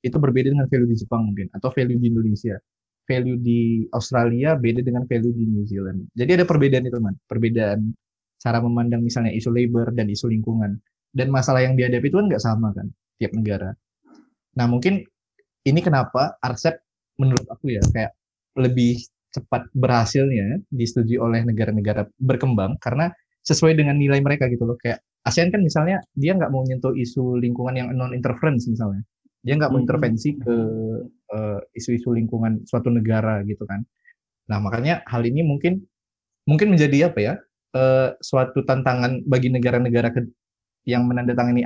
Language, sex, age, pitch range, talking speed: Indonesian, male, 20-39, 115-130 Hz, 160 wpm